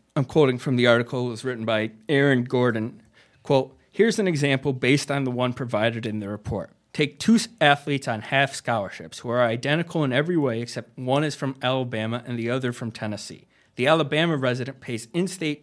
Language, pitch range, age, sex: English, 120-145 Hz, 30-49, male